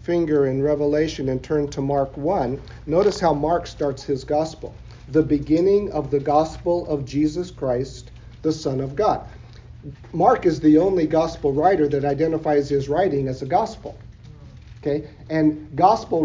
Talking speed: 155 wpm